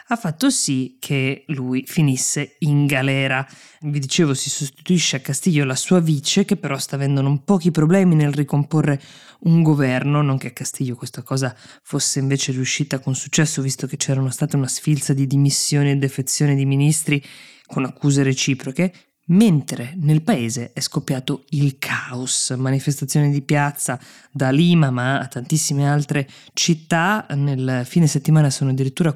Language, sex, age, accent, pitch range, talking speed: Italian, female, 20-39, native, 135-150 Hz, 155 wpm